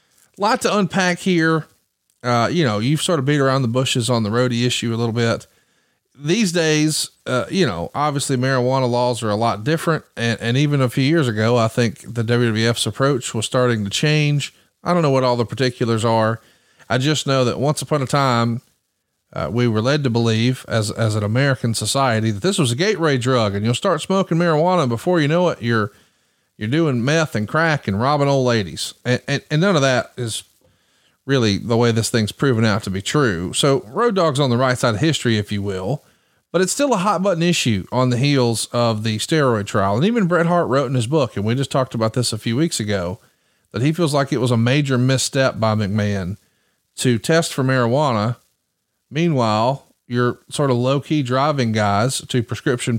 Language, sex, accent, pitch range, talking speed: English, male, American, 115-150 Hz, 210 wpm